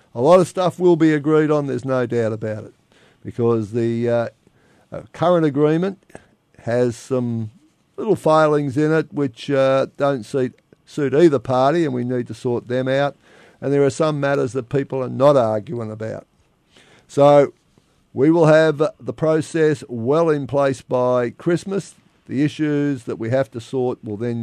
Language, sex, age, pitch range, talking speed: English, male, 50-69, 120-155 Hz, 170 wpm